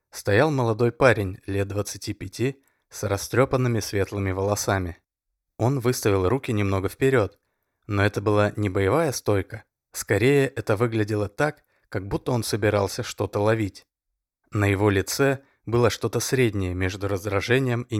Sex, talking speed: male, 130 wpm